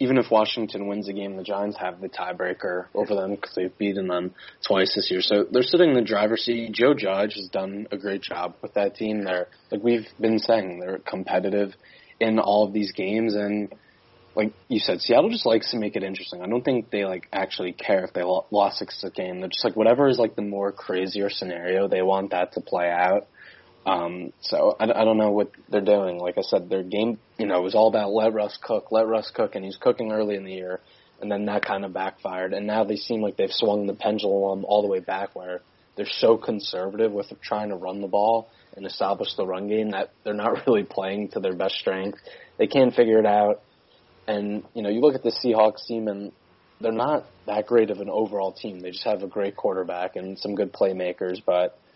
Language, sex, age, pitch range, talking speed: English, male, 20-39, 95-110 Hz, 230 wpm